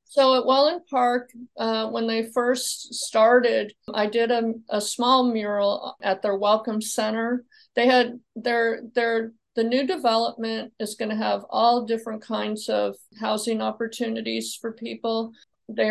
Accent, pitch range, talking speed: American, 205-235 Hz, 145 wpm